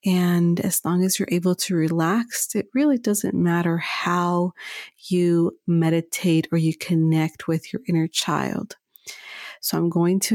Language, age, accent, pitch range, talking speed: English, 40-59, American, 170-195 Hz, 150 wpm